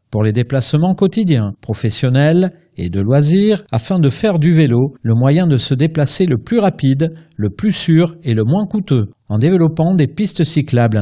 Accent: French